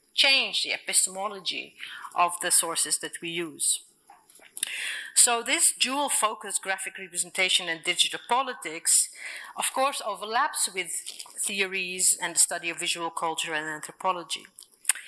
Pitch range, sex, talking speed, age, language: 170-210 Hz, female, 120 wpm, 40-59, Spanish